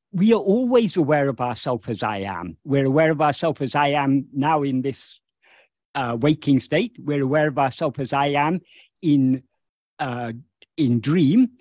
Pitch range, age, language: 130-175 Hz, 50-69, English